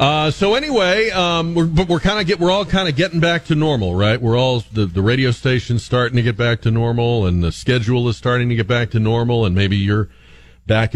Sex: male